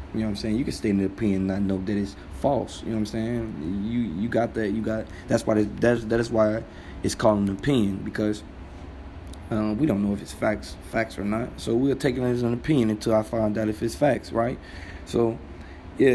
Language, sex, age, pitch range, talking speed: English, male, 20-39, 95-110 Hz, 245 wpm